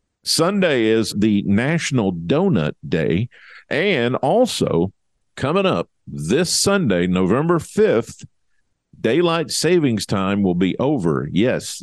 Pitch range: 90-135 Hz